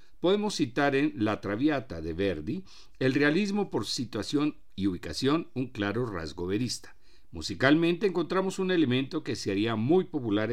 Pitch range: 100-150 Hz